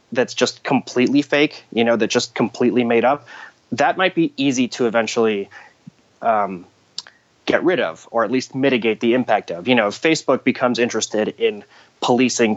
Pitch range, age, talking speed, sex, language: 110-135 Hz, 30-49, 170 wpm, male, English